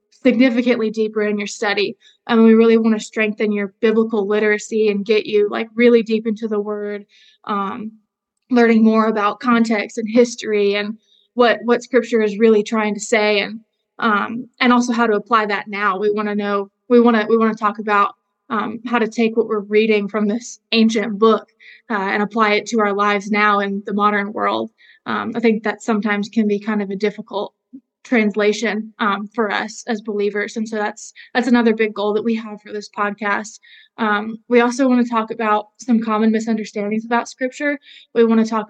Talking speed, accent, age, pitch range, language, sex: 200 wpm, American, 20-39, 210-230 Hz, English, female